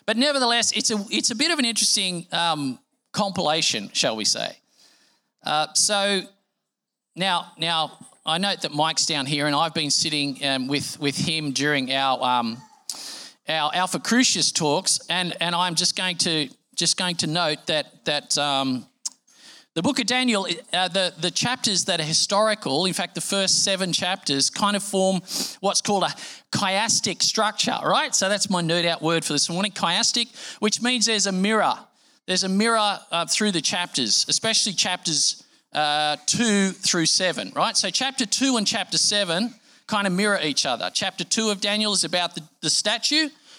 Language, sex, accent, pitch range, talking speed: English, male, Australian, 165-210 Hz, 175 wpm